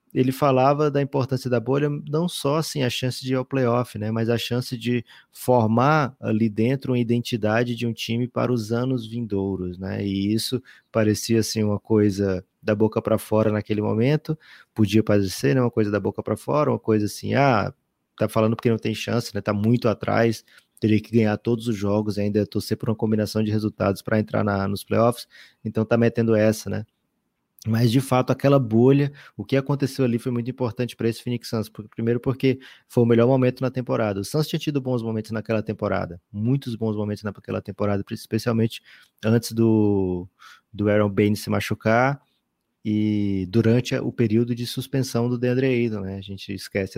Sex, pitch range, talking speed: male, 105-125 Hz, 190 wpm